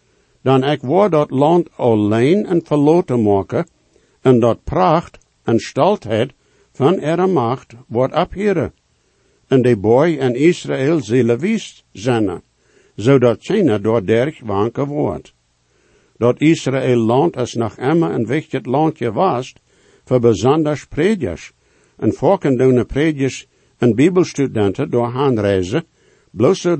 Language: English